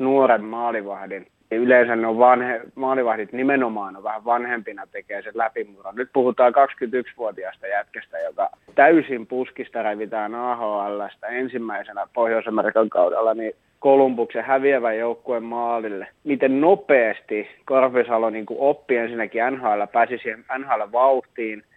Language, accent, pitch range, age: Finnish, native, 110-130 Hz, 30-49